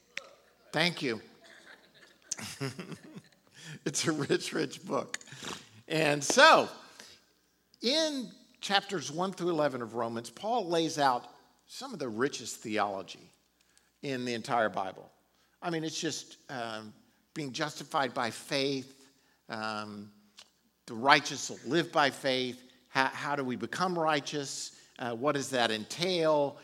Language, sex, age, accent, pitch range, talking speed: English, male, 50-69, American, 130-185 Hz, 120 wpm